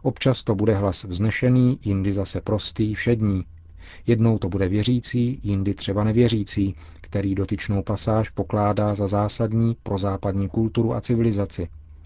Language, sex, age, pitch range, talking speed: Czech, male, 40-59, 95-120 Hz, 135 wpm